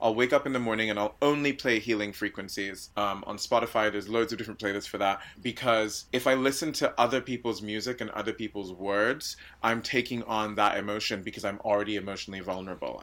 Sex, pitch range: male, 105-125 Hz